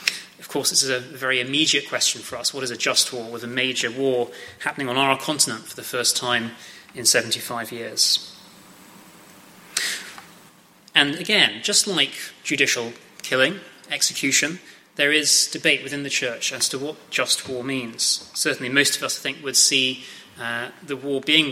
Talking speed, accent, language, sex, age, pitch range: 165 wpm, British, English, male, 30-49, 125-155 Hz